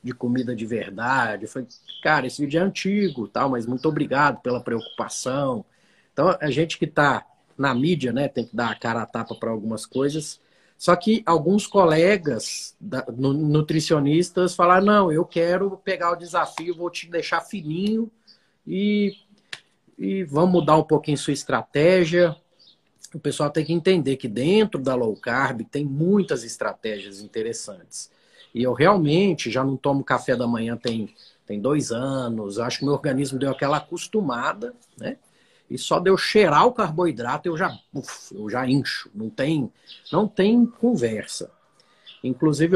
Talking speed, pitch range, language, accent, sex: 155 wpm, 130-175 Hz, Portuguese, Brazilian, male